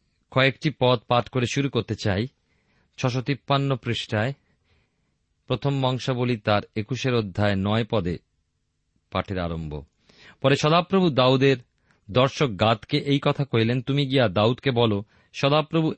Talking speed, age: 105 wpm, 40-59